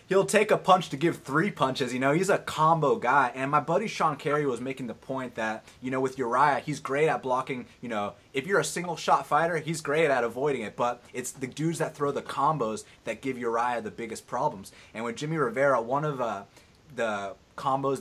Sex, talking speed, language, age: male, 225 wpm, English, 30-49